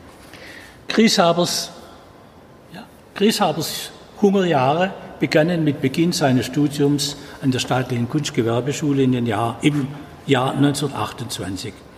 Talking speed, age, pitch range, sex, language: 95 wpm, 60-79, 125-170 Hz, male, German